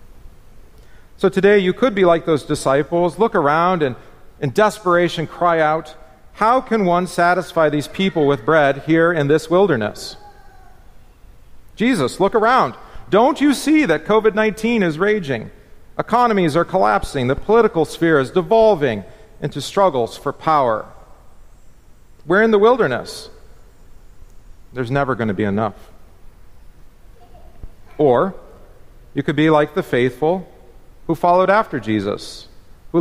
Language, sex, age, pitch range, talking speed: English, male, 40-59, 125-185 Hz, 130 wpm